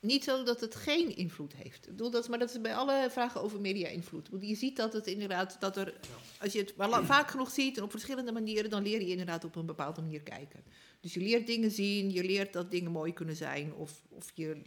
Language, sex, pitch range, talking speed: Dutch, female, 175-225 Hz, 255 wpm